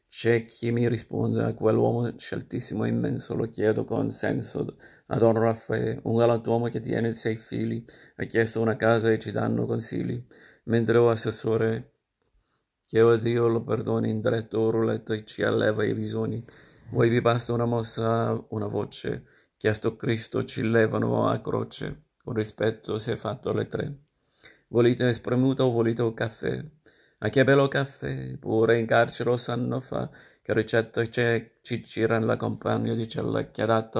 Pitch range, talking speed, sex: 110-120 Hz, 160 wpm, male